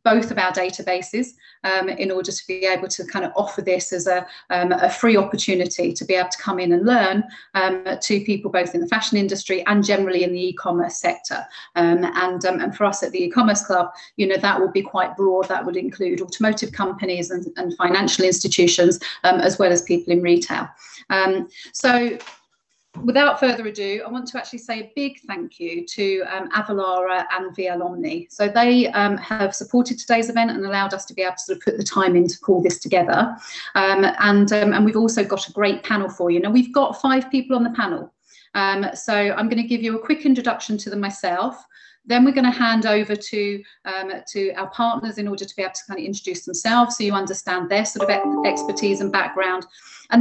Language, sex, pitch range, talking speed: English, female, 185-235 Hz, 215 wpm